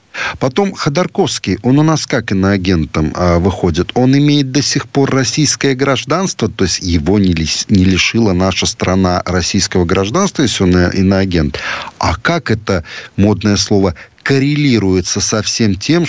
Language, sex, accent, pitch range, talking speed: Russian, male, native, 100-145 Hz, 135 wpm